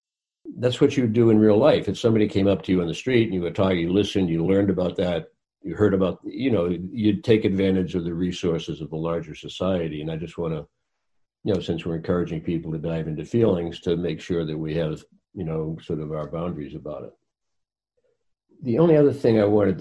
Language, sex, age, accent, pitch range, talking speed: English, male, 60-79, American, 80-100 Hz, 230 wpm